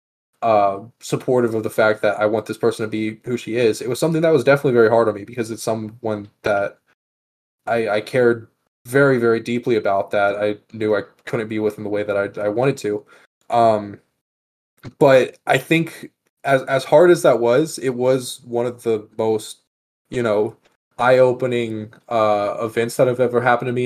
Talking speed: 195 wpm